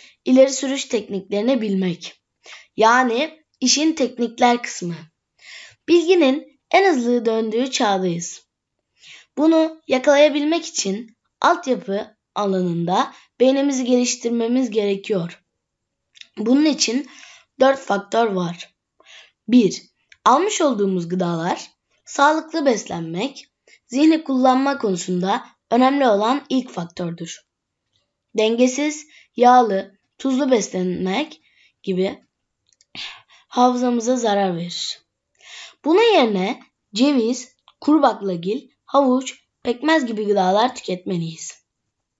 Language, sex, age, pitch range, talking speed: Turkish, female, 10-29, 195-280 Hz, 80 wpm